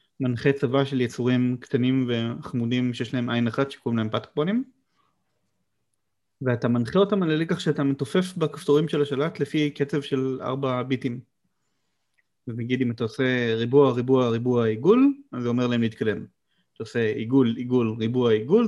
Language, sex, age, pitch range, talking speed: Hebrew, male, 30-49, 120-145 Hz, 155 wpm